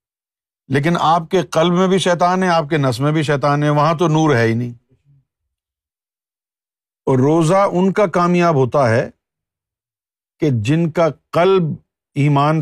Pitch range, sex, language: 125-175 Hz, male, Urdu